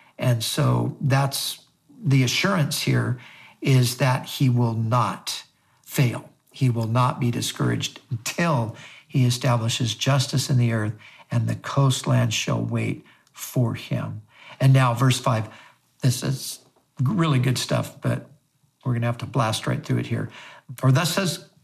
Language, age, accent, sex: English, 50-69, American, male